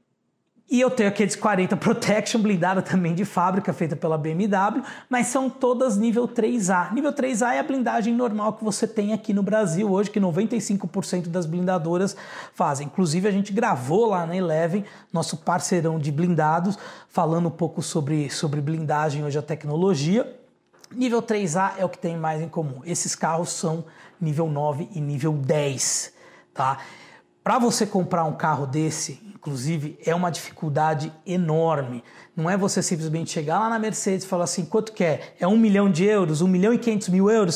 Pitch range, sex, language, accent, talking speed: 165-215 Hz, male, Portuguese, Brazilian, 175 wpm